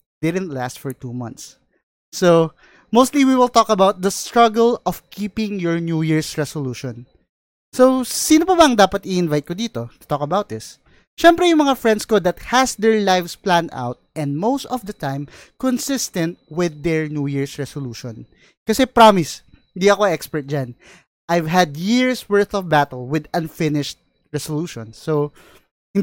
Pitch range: 150-220 Hz